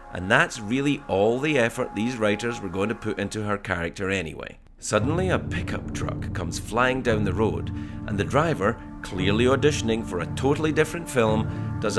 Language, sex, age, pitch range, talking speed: English, male, 40-59, 100-140 Hz, 180 wpm